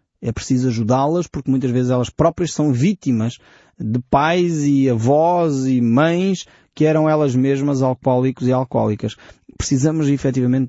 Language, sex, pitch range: Portuguese, male, 120-150 Hz